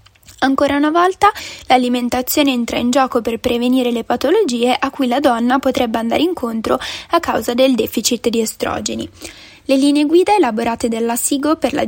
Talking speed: 160 wpm